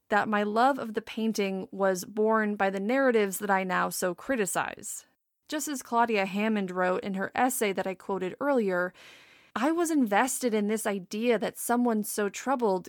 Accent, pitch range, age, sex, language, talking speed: American, 195-245 Hz, 30-49, female, English, 175 wpm